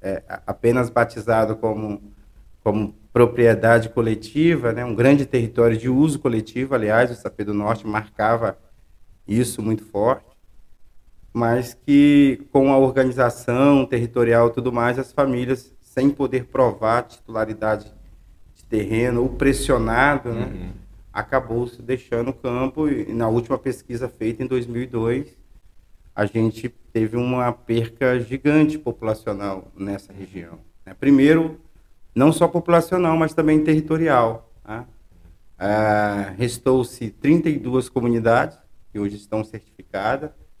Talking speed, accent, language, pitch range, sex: 115 wpm, Brazilian, Portuguese, 105-130 Hz, male